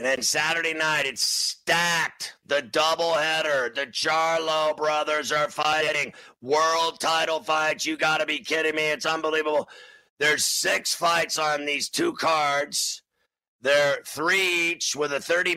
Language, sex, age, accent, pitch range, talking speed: English, male, 50-69, American, 145-160 Hz, 145 wpm